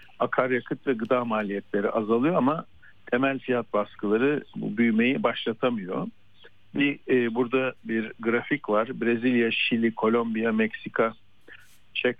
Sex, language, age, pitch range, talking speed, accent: male, Turkish, 50-69, 115-140 Hz, 115 wpm, native